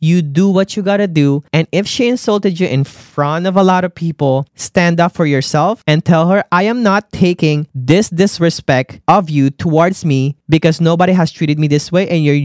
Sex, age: male, 20-39